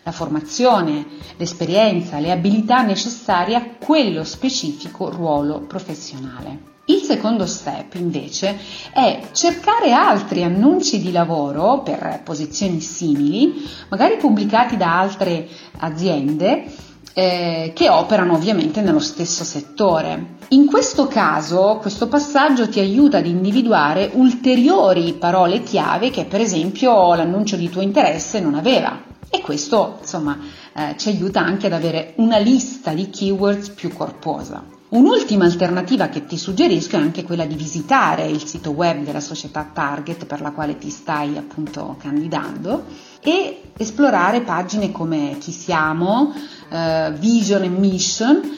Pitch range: 160-230 Hz